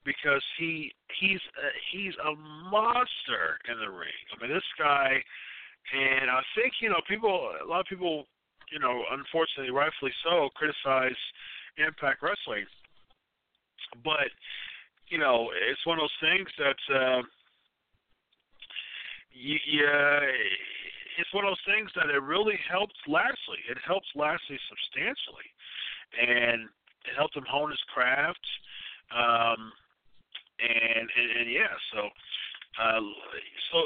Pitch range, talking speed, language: 120-180 Hz, 130 wpm, English